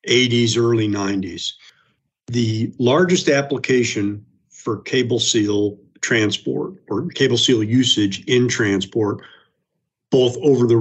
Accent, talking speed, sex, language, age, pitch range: American, 105 wpm, male, English, 50-69, 100-120 Hz